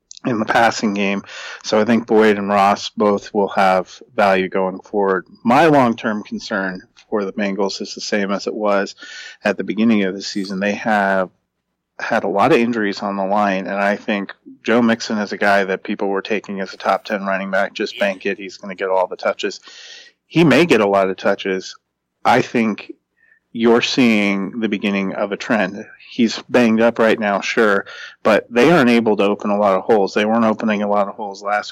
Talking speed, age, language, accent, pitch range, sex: 210 wpm, 30-49, English, American, 100-110 Hz, male